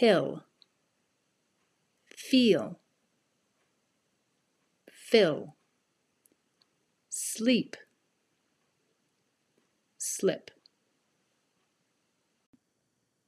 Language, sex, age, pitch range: English, female, 40-59, 175-255 Hz